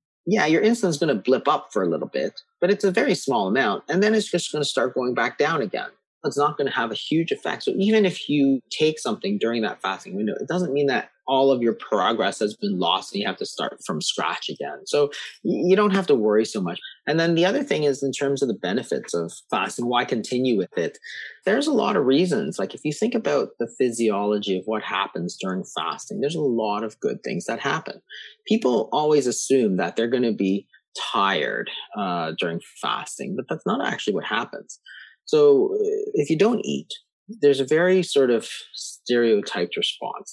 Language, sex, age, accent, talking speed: English, male, 30-49, American, 215 wpm